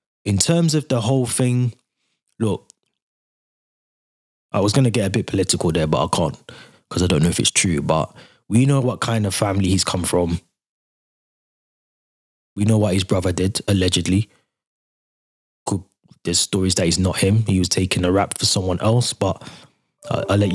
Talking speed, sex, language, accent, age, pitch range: 180 wpm, male, English, British, 20-39, 100-125 Hz